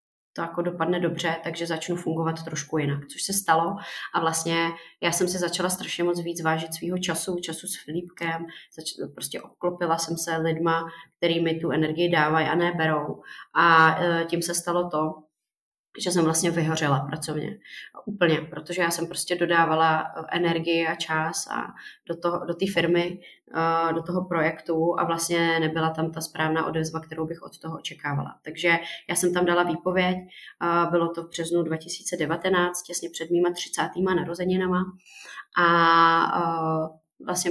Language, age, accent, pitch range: Czech, 20-39, native, 160-175 Hz